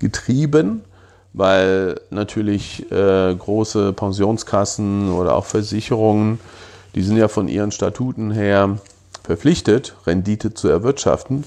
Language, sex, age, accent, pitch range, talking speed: German, male, 40-59, German, 95-110 Hz, 105 wpm